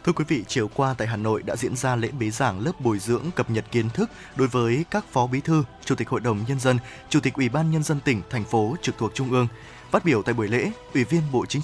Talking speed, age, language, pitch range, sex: 285 wpm, 20-39, Vietnamese, 120-160 Hz, male